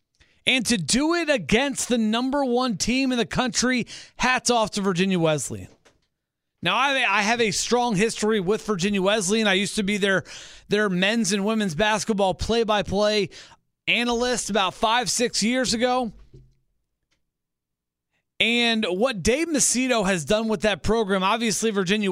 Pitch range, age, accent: 185-230 Hz, 30-49, American